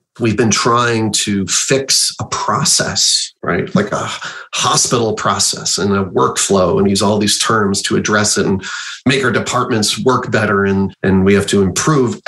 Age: 30-49